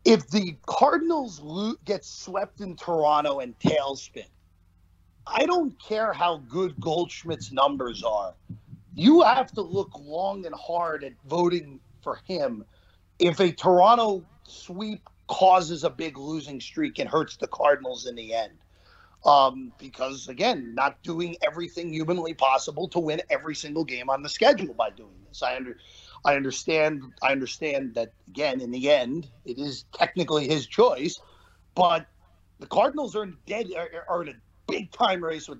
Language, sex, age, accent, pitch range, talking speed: English, male, 40-59, American, 135-205 Hz, 155 wpm